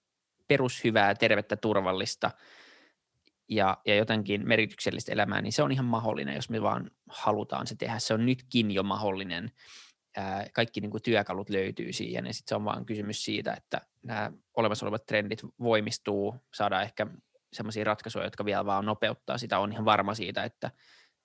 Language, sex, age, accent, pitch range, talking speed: Finnish, male, 20-39, native, 105-125 Hz, 160 wpm